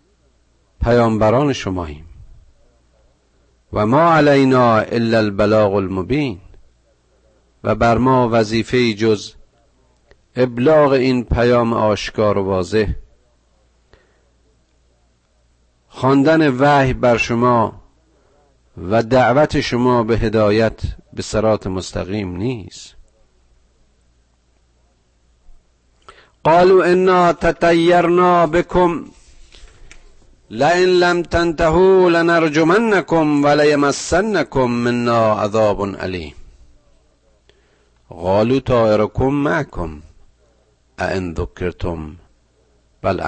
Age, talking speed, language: 50-69, 70 wpm, Persian